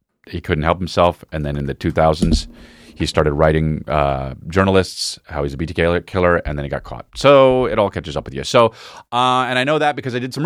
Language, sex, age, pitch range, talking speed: English, male, 30-49, 95-145 Hz, 235 wpm